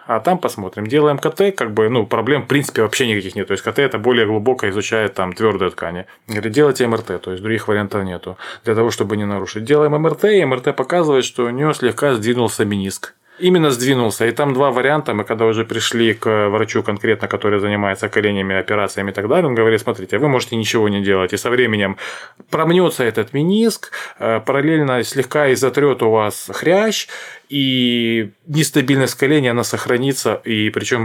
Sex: male